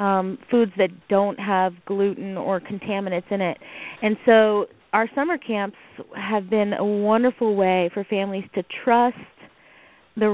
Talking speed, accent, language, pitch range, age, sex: 145 wpm, American, English, 195-230 Hz, 20-39, female